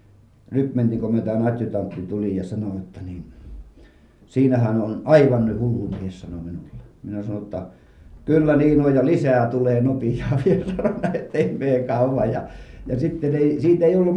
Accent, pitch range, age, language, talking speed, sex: native, 105-140 Hz, 50-69, Finnish, 140 wpm, male